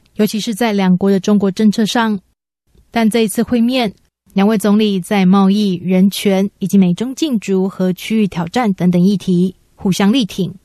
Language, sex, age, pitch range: Chinese, female, 20-39, 195-225 Hz